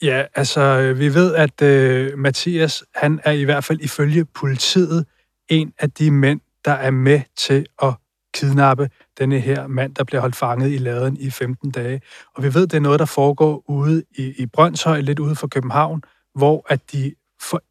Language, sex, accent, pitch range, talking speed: Danish, male, native, 130-150 Hz, 190 wpm